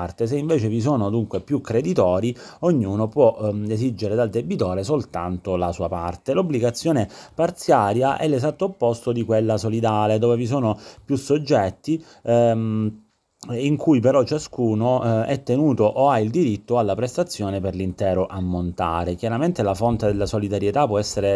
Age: 30-49